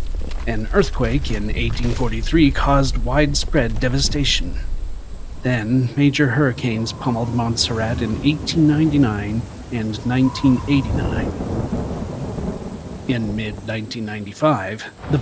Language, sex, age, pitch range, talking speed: English, male, 40-59, 105-140 Hz, 75 wpm